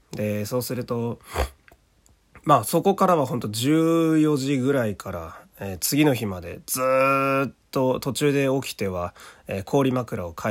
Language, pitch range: Japanese, 100-130 Hz